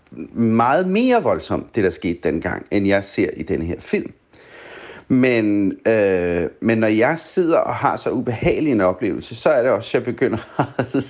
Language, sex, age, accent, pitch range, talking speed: Danish, male, 40-59, native, 110-140 Hz, 185 wpm